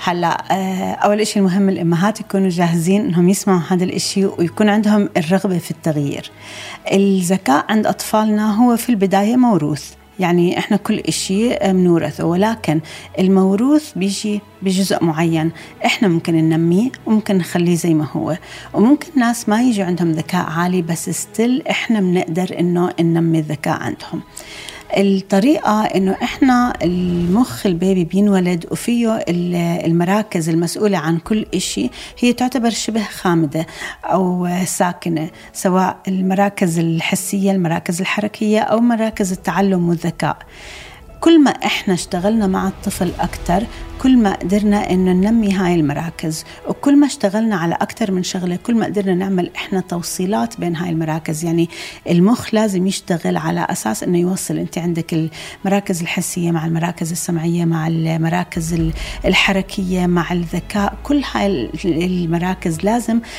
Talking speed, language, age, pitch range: 130 wpm, Arabic, 30-49, 170-205 Hz